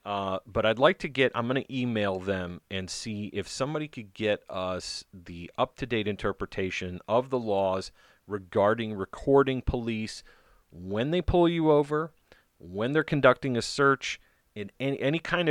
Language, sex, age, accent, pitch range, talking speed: English, male, 40-59, American, 95-120 Hz, 160 wpm